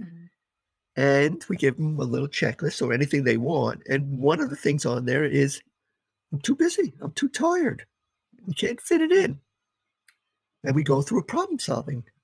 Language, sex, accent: English, male, American